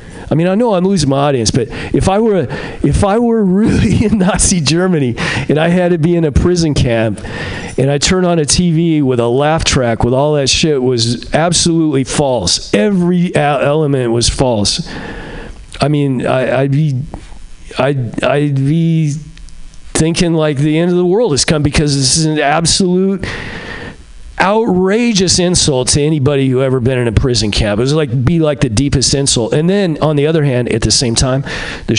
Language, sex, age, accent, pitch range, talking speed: English, male, 40-59, American, 120-160 Hz, 185 wpm